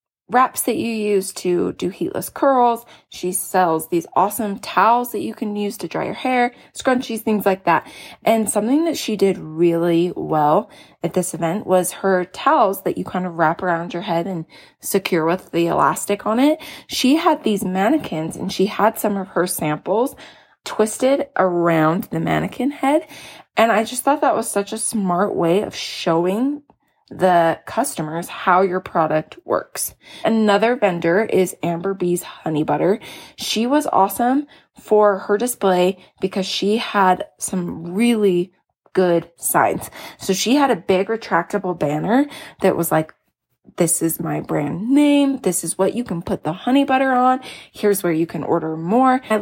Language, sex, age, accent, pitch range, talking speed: English, female, 20-39, American, 175-235 Hz, 170 wpm